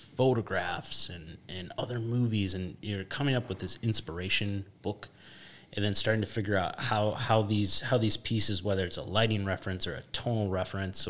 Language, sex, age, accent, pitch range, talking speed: English, male, 20-39, American, 95-115 Hz, 185 wpm